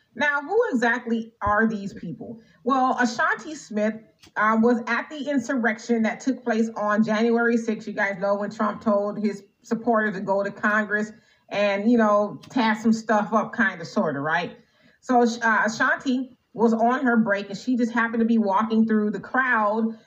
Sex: female